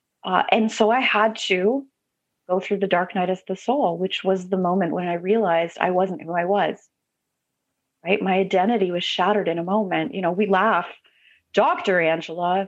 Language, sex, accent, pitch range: English, female, American, 175-210 Hz